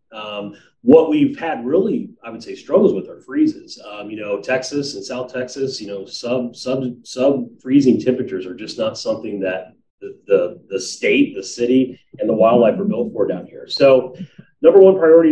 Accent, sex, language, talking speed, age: American, male, English, 190 wpm, 30-49